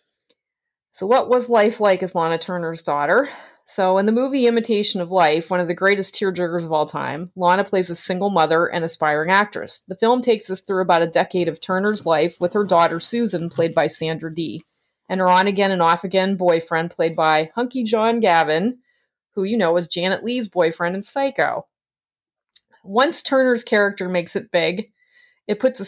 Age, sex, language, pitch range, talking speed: 30-49, female, English, 170-215 Hz, 185 wpm